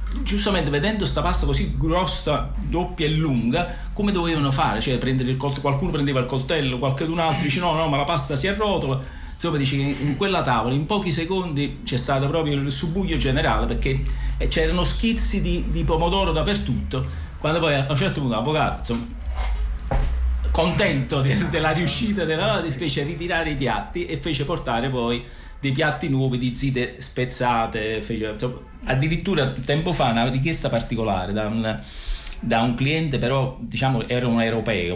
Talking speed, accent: 160 wpm, native